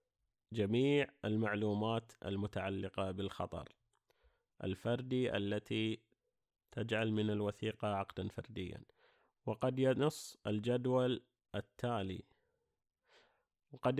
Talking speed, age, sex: 70 wpm, 30-49, male